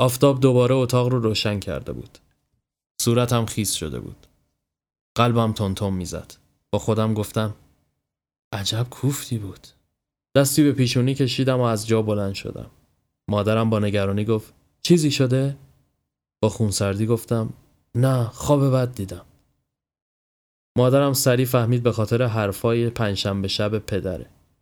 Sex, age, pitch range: male, 20-39, 100-125 Hz